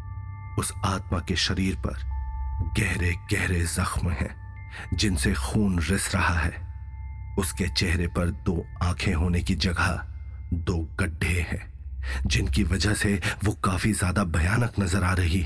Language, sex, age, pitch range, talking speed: Hindi, male, 40-59, 85-105 Hz, 135 wpm